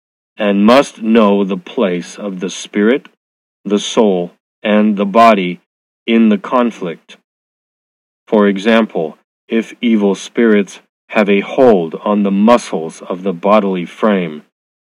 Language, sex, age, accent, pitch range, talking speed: English, male, 40-59, American, 95-115 Hz, 125 wpm